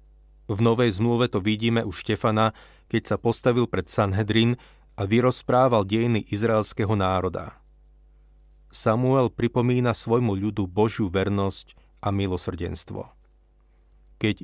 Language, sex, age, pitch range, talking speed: Slovak, male, 30-49, 95-115 Hz, 110 wpm